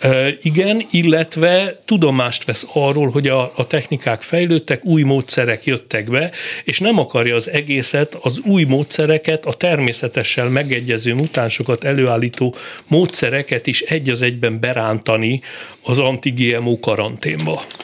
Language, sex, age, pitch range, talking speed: Hungarian, male, 60-79, 125-155 Hz, 125 wpm